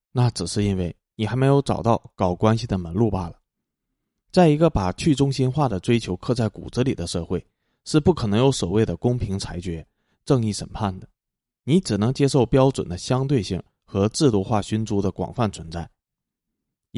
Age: 20-39